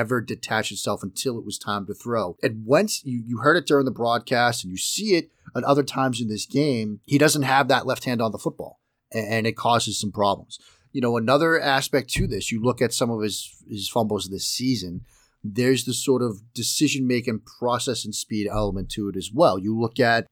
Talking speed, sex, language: 225 wpm, male, English